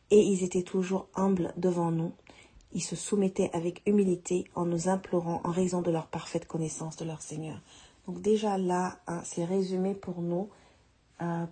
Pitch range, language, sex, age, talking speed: 170-195 Hz, French, female, 40-59, 170 wpm